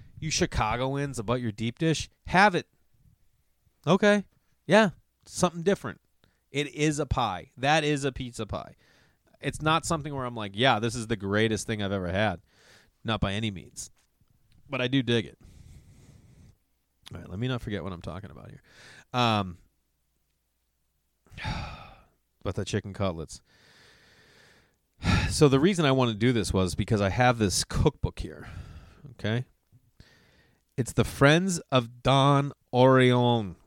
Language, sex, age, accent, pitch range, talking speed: English, male, 30-49, American, 100-125 Hz, 150 wpm